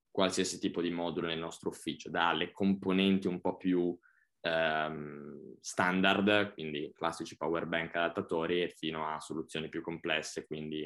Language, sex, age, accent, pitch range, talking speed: Italian, male, 20-39, native, 80-95 Hz, 135 wpm